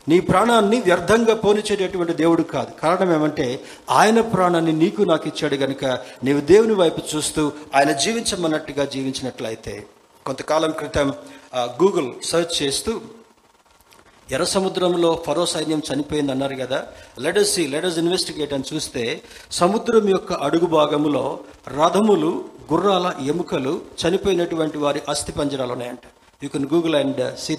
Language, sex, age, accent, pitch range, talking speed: Telugu, male, 50-69, native, 140-185 Hz, 120 wpm